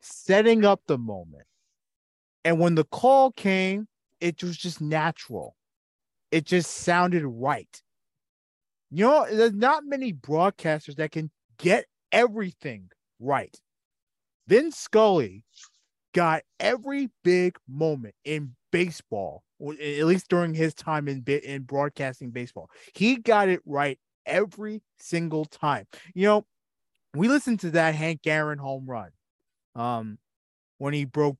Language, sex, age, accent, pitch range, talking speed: English, male, 30-49, American, 145-200 Hz, 130 wpm